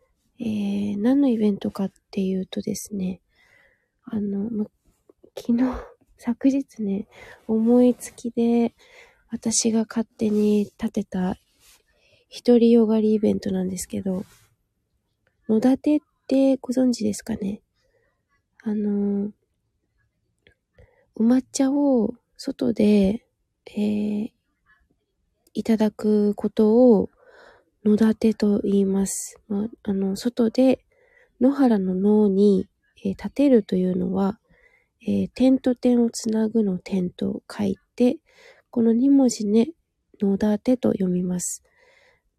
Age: 20-39